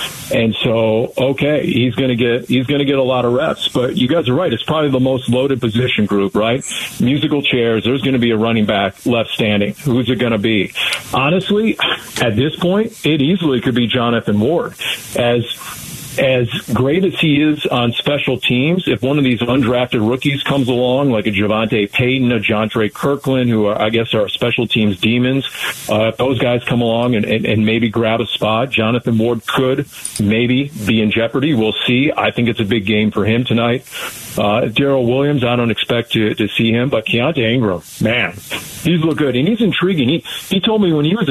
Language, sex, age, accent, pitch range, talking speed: English, male, 40-59, American, 115-140 Hz, 200 wpm